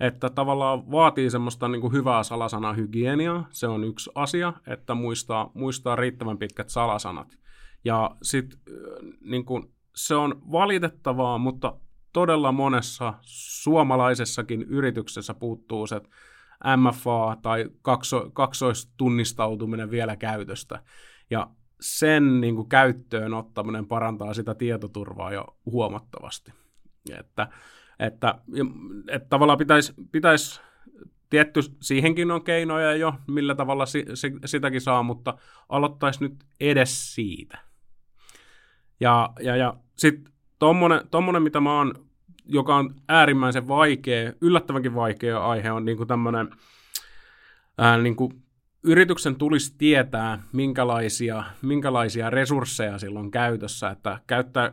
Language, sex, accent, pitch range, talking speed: Finnish, male, native, 115-140 Hz, 110 wpm